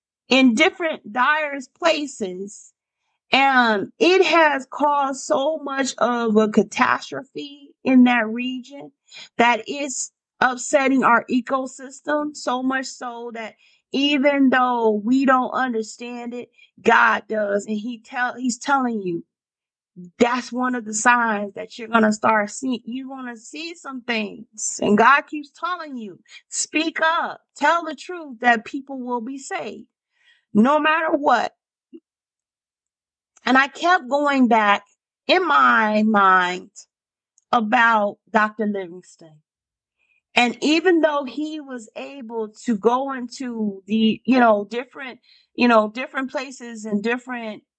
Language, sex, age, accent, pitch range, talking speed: English, female, 40-59, American, 220-285 Hz, 130 wpm